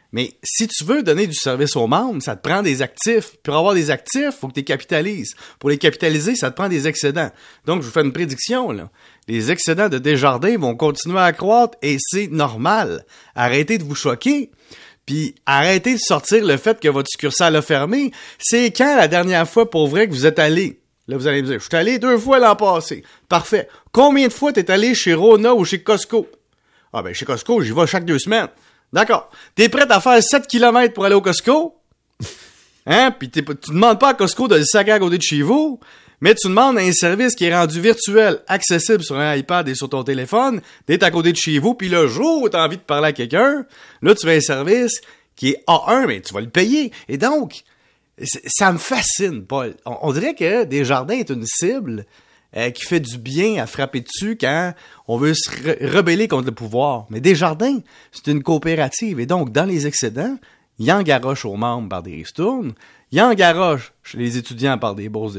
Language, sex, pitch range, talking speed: French, male, 145-225 Hz, 225 wpm